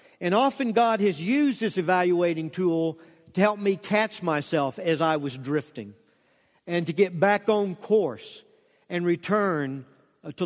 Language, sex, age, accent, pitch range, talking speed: English, male, 50-69, American, 160-225 Hz, 150 wpm